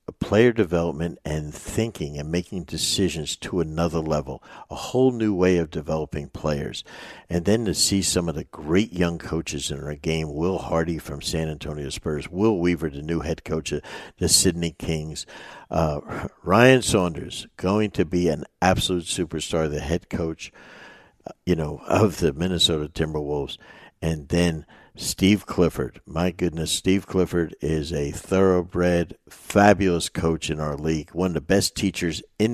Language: English